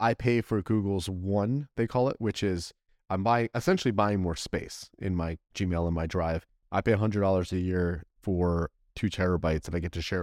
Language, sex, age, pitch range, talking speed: English, male, 30-49, 90-110 Hz, 215 wpm